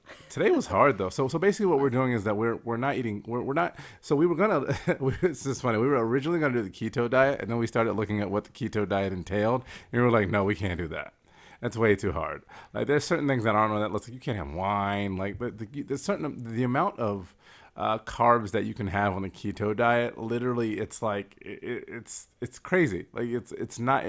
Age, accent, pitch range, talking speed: 30-49, American, 100-130 Hz, 255 wpm